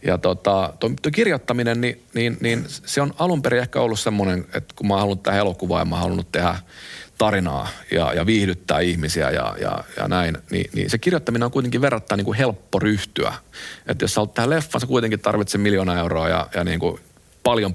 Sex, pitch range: male, 90-110 Hz